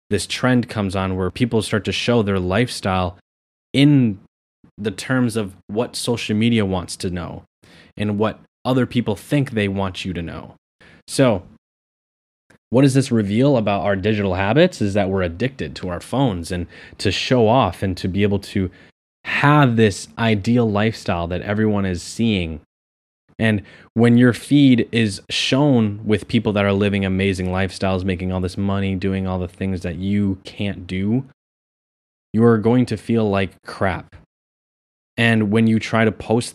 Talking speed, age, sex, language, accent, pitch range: 165 wpm, 20-39, male, English, American, 95-115 Hz